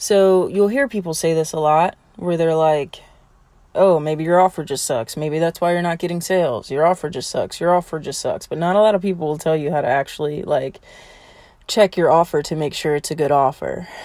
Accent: American